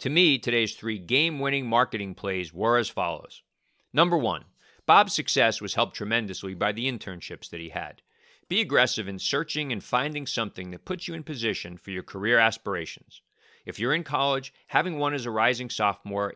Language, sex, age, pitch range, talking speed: English, male, 50-69, 95-135 Hz, 180 wpm